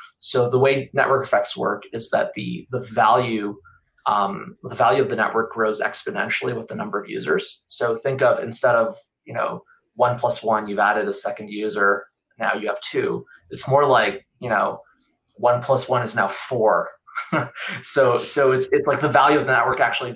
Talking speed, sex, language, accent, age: 195 wpm, male, English, American, 20-39